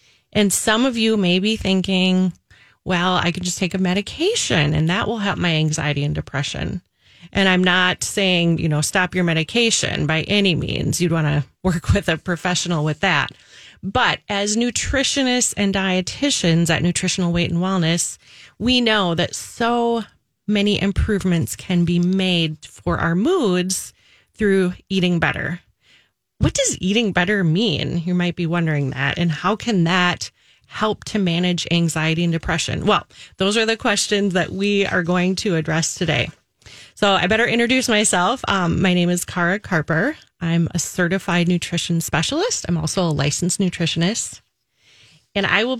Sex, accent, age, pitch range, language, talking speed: female, American, 30-49, 165-205 Hz, English, 160 wpm